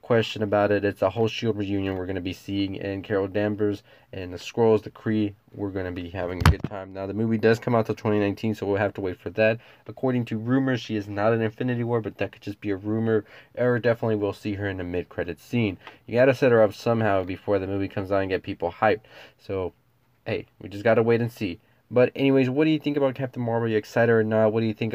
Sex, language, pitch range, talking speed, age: male, English, 100-120 Hz, 265 wpm, 20-39